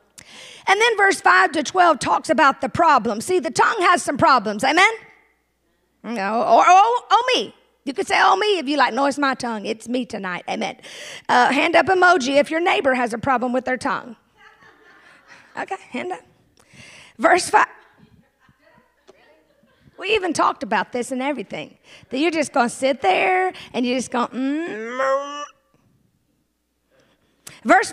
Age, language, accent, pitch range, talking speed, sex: 50-69, English, American, 290-390 Hz, 165 wpm, female